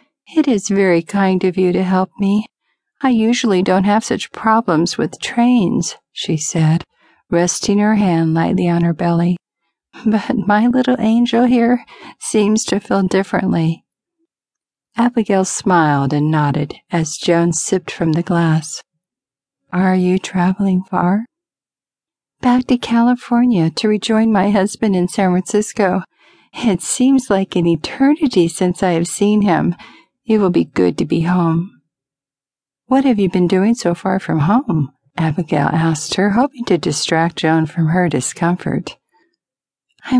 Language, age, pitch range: English, 50-69, 170-220 Hz